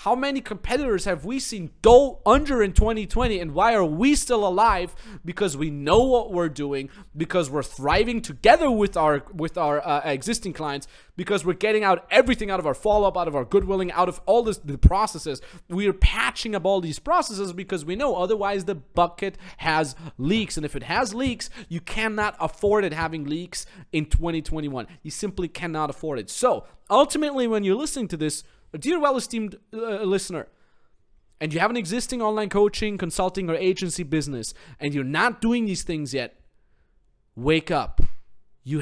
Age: 30-49